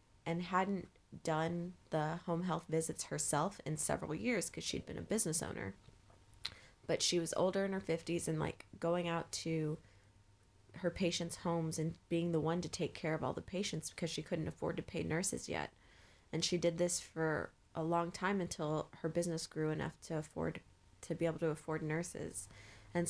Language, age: English, 20-39